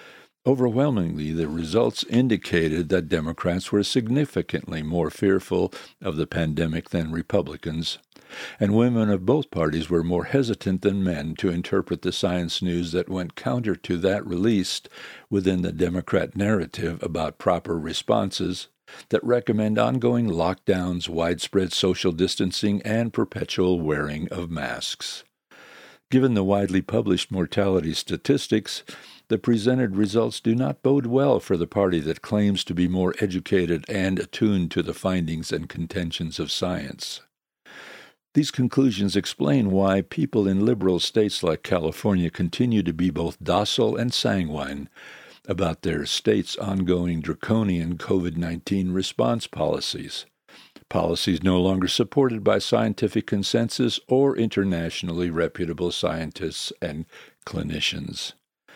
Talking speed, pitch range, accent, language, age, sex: 125 wpm, 85-110 Hz, American, English, 60-79, male